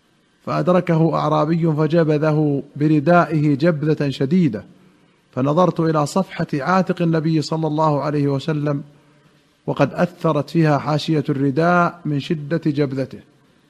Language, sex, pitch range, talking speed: Arabic, male, 145-170 Hz, 100 wpm